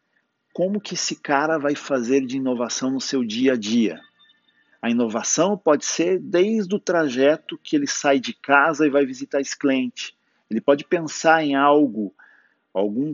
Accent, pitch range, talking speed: Brazilian, 125-195 Hz, 165 wpm